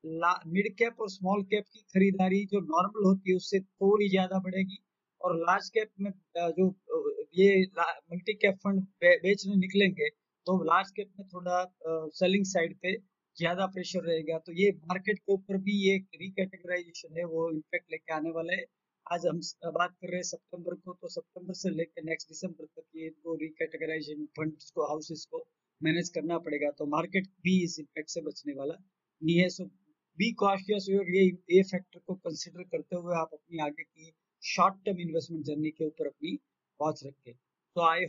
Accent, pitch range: Indian, 155-190 Hz